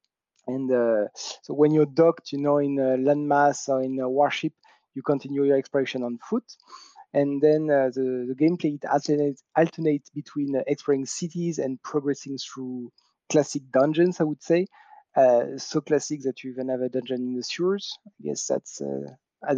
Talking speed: 180 wpm